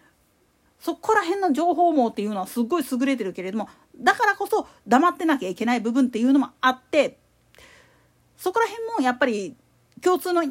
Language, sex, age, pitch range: Japanese, female, 40-59, 245-355 Hz